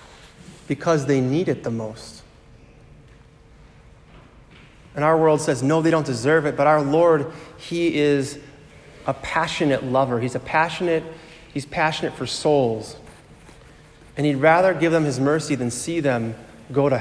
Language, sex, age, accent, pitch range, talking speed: English, male, 30-49, American, 135-165 Hz, 150 wpm